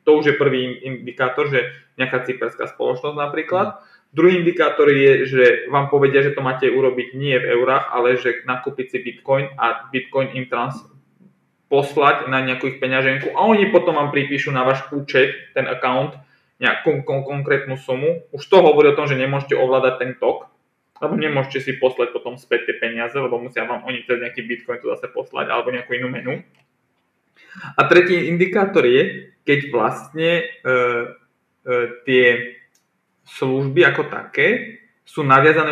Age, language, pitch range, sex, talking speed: 20-39, Slovak, 125-165 Hz, male, 165 wpm